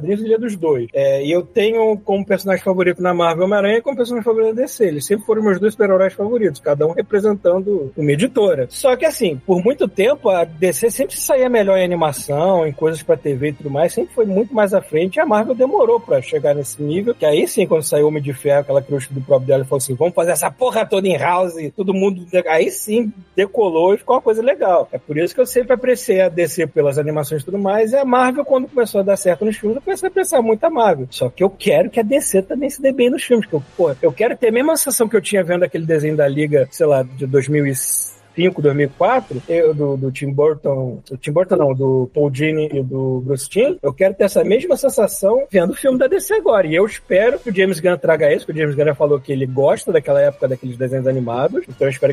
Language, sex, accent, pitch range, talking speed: Portuguese, male, Brazilian, 145-225 Hz, 250 wpm